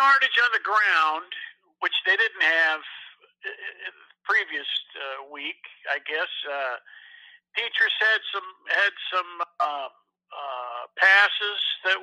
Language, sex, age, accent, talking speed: English, male, 50-69, American, 120 wpm